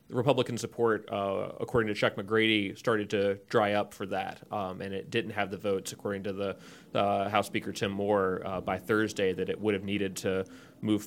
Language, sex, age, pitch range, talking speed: English, male, 30-49, 100-115 Hz, 205 wpm